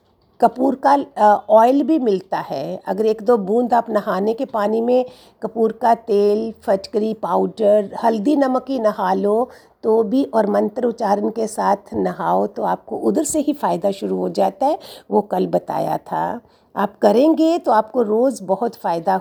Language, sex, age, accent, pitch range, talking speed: Hindi, female, 50-69, native, 205-270 Hz, 170 wpm